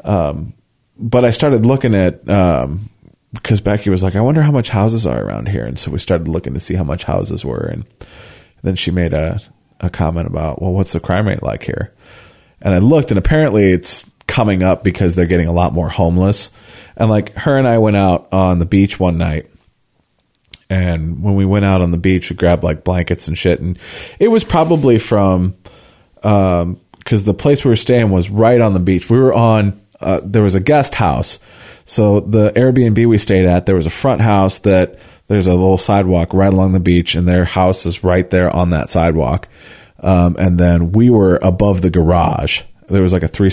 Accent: American